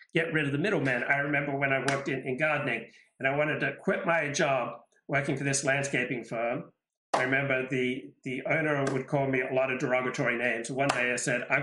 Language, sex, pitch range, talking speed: English, male, 130-150 Hz, 220 wpm